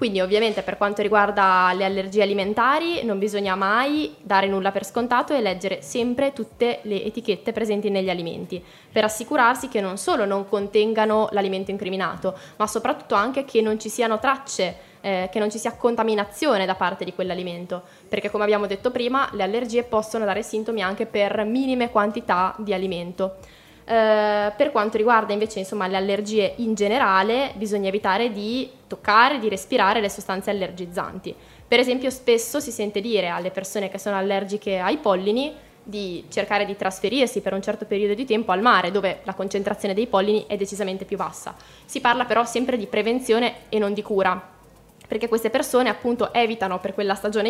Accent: native